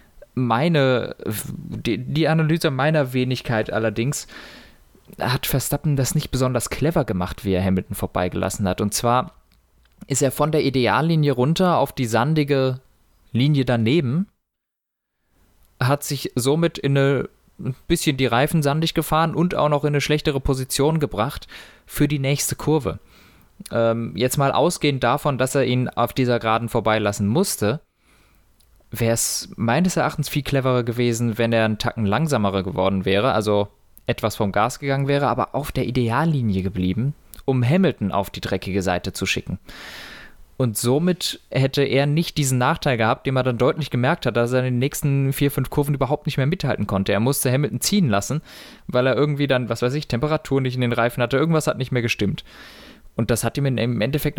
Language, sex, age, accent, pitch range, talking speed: German, male, 20-39, German, 115-145 Hz, 175 wpm